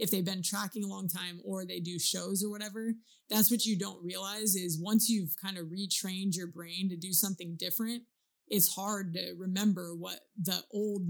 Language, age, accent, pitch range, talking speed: English, 20-39, American, 170-200 Hz, 200 wpm